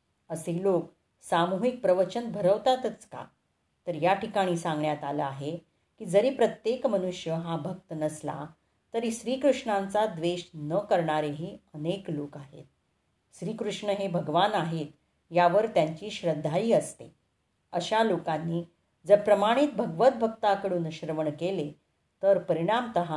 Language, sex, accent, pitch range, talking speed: Marathi, female, native, 160-205 Hz, 115 wpm